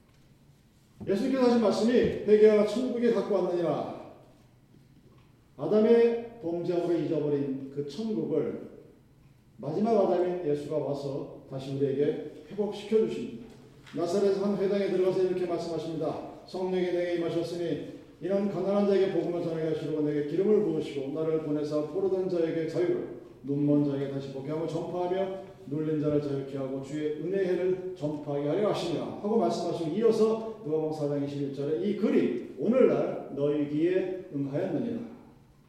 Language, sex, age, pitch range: Korean, male, 40-59, 140-195 Hz